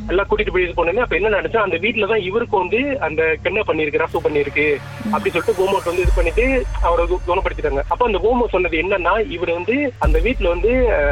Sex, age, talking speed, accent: male, 30-49, 125 wpm, native